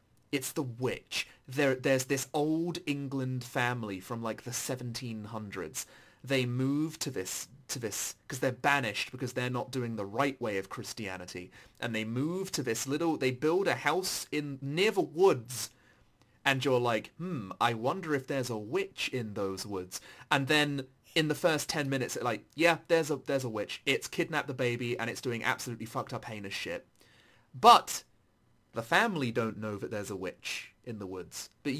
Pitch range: 120-155 Hz